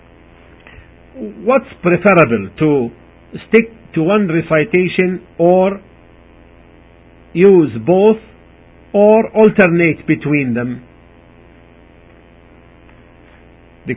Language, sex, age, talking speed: English, male, 50-69, 65 wpm